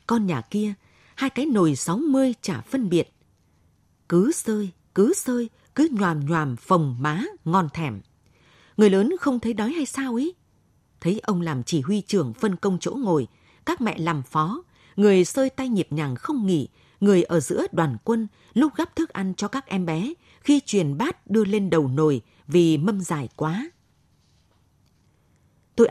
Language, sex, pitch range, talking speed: Vietnamese, female, 170-245 Hz, 175 wpm